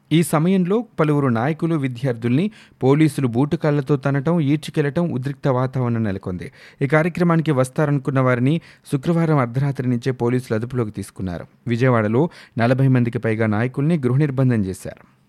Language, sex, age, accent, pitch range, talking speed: Telugu, male, 30-49, native, 115-145 Hz, 115 wpm